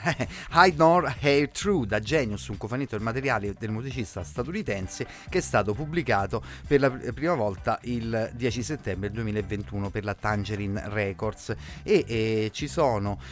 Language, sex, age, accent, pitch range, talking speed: Italian, male, 30-49, native, 105-140 Hz, 150 wpm